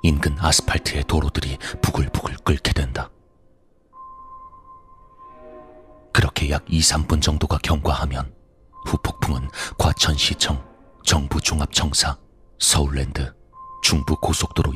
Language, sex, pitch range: Korean, male, 75-95 Hz